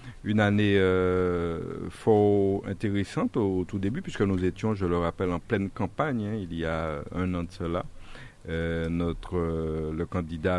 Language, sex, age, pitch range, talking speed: French, male, 50-69, 85-100 Hz, 175 wpm